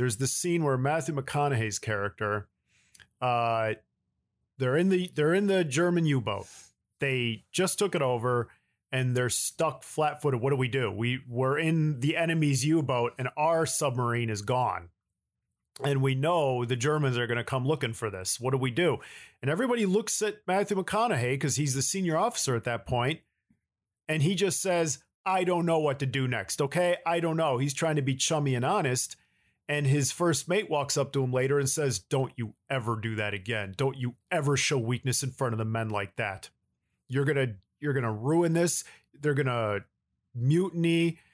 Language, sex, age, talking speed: English, male, 40-59, 195 wpm